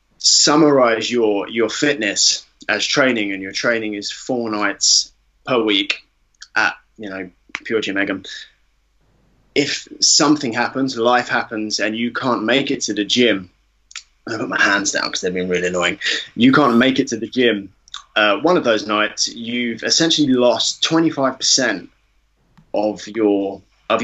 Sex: male